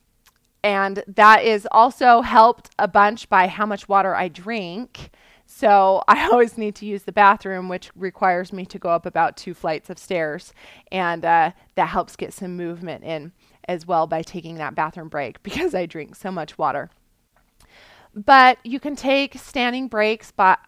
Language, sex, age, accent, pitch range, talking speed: English, female, 20-39, American, 180-215 Hz, 170 wpm